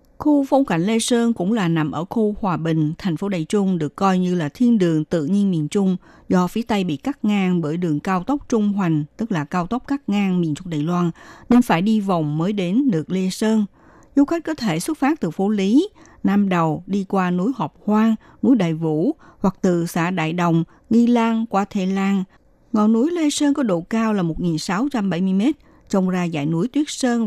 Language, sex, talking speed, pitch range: Vietnamese, female, 220 wpm, 170-230 Hz